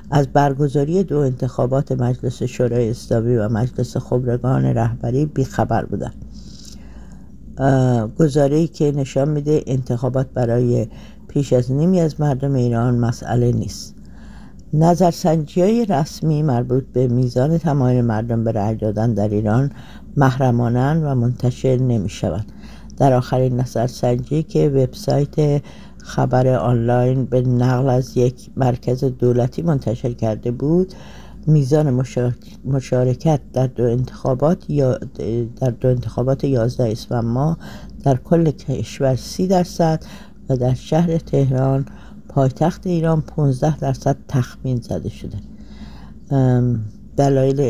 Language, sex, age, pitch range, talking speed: English, female, 60-79, 120-145 Hz, 110 wpm